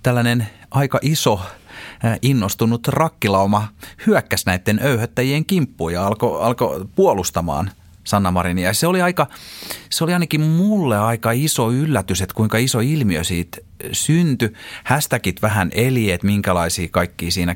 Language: Finnish